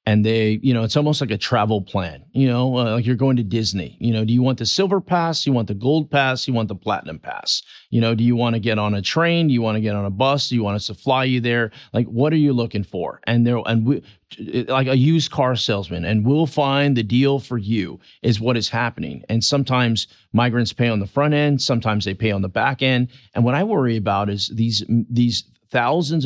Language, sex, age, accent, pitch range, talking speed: English, male, 40-59, American, 110-130 Hz, 260 wpm